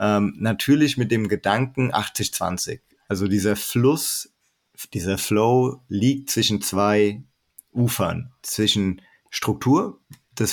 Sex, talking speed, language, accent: male, 105 wpm, German, German